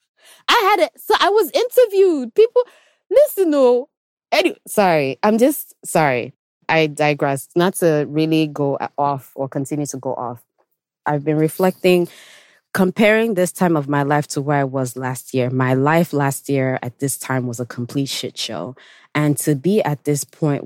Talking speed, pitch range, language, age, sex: 170 wpm, 135-165 Hz, English, 20-39, female